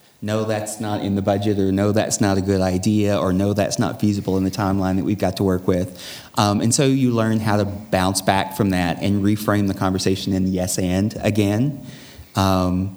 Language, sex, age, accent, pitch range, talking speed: English, male, 30-49, American, 95-110 Hz, 220 wpm